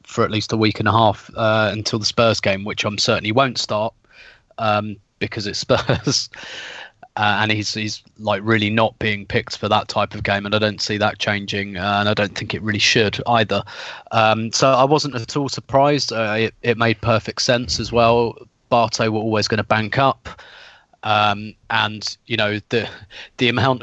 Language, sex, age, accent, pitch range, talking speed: English, male, 20-39, British, 105-120 Hz, 200 wpm